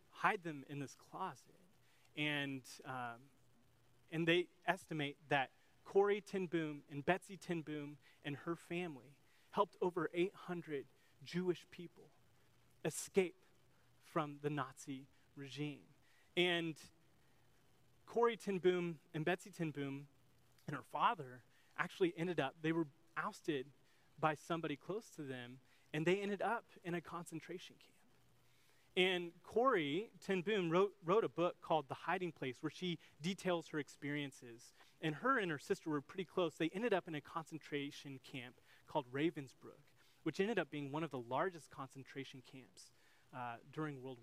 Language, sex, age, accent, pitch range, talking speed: English, male, 30-49, American, 135-175 Hz, 140 wpm